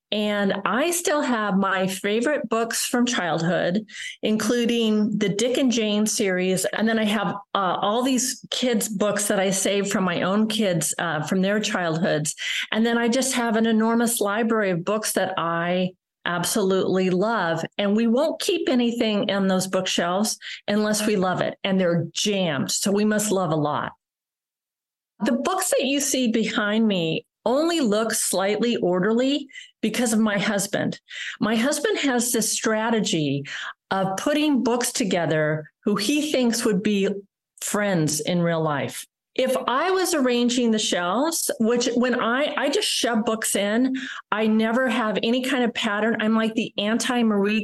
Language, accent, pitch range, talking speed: English, American, 195-245 Hz, 160 wpm